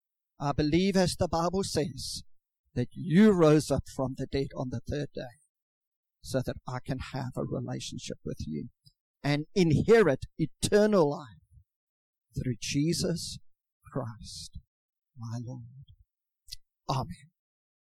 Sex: male